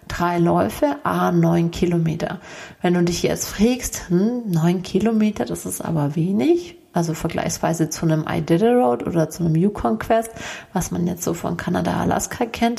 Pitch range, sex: 170-210 Hz, female